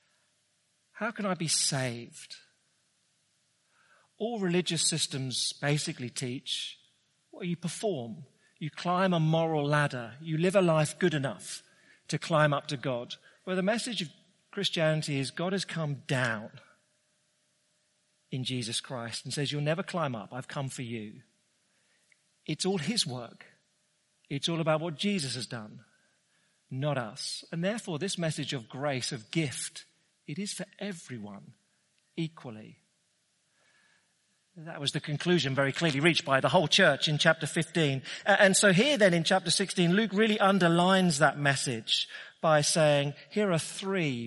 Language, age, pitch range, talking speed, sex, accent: English, 40-59, 140-185 Hz, 150 wpm, male, British